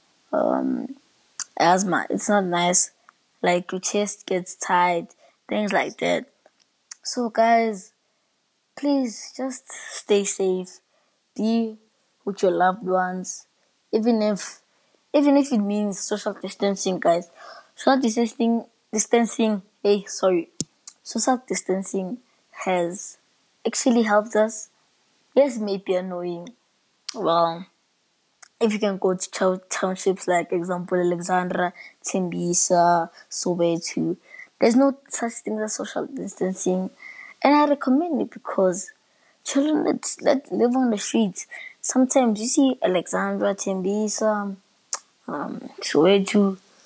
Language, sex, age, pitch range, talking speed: English, female, 20-39, 185-235 Hz, 110 wpm